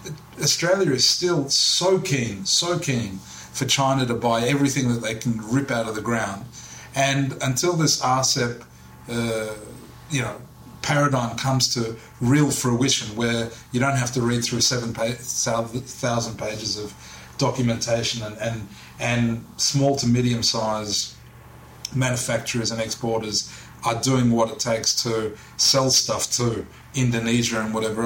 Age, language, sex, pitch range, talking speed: 30-49, English, male, 115-130 Hz, 130 wpm